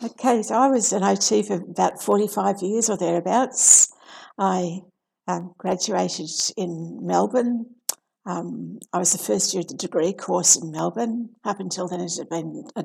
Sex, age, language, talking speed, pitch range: female, 60-79, English, 170 wpm, 175-220 Hz